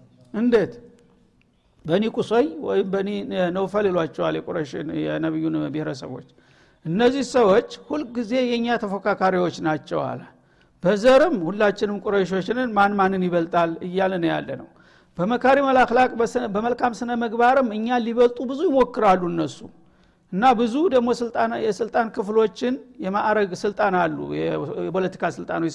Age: 60-79